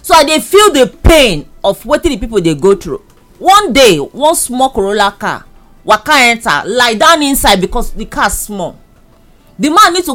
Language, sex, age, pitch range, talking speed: English, female, 40-59, 210-320 Hz, 200 wpm